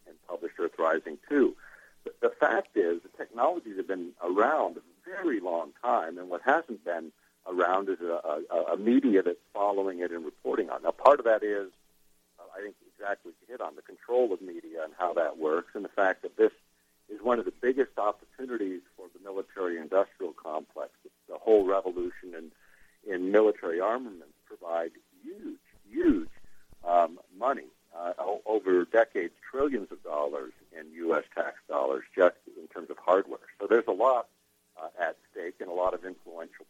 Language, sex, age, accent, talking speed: English, male, 60-79, American, 180 wpm